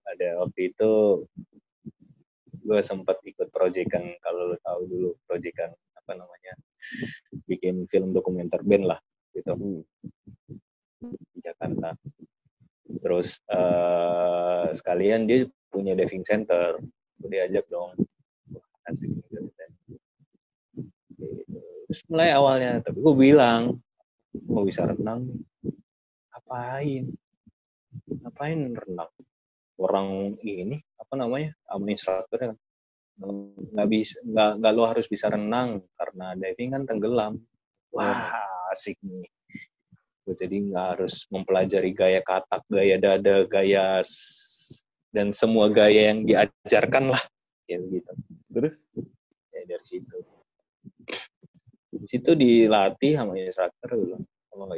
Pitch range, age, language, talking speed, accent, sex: 95-125 Hz, 30-49, Indonesian, 100 wpm, native, male